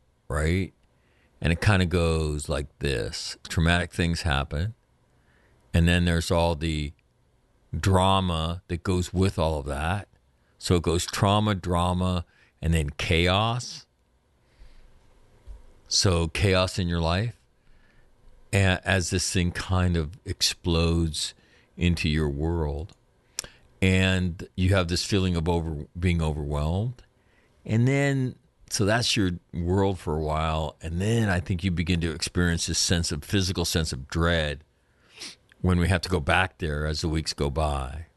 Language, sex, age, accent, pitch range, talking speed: English, male, 50-69, American, 80-95 Hz, 140 wpm